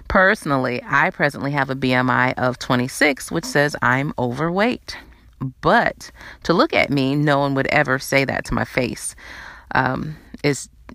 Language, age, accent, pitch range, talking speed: English, 30-49, American, 125-155 Hz, 155 wpm